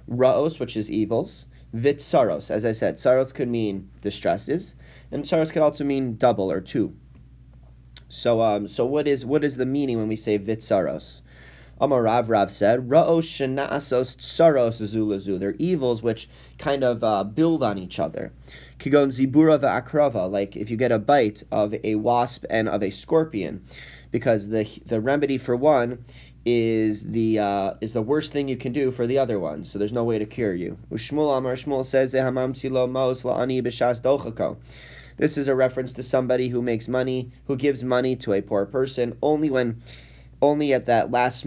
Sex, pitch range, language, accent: male, 110-135 Hz, English, American